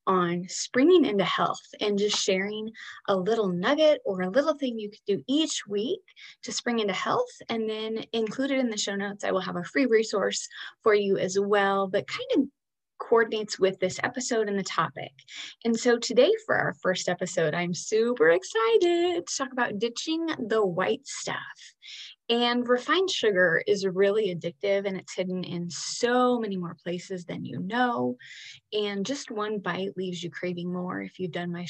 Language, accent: English, American